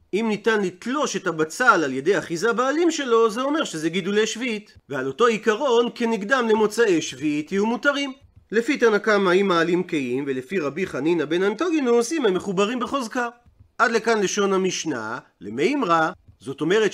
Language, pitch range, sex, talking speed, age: Hebrew, 180-240 Hz, male, 160 wpm, 40-59